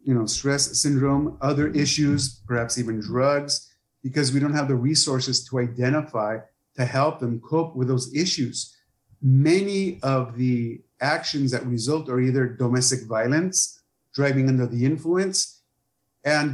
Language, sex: English, male